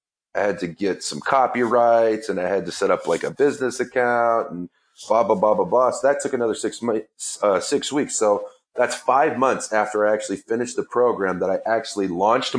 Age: 30-49